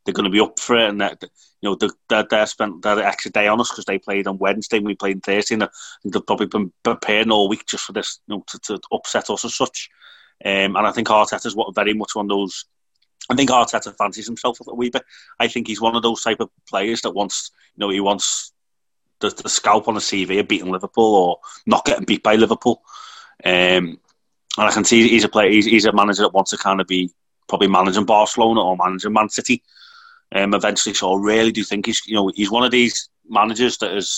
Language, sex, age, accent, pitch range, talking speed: English, male, 30-49, British, 100-120 Hz, 245 wpm